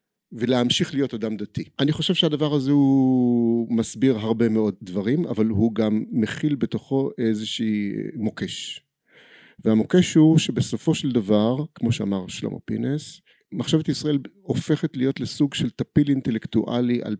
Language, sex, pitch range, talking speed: Hebrew, male, 110-145 Hz, 135 wpm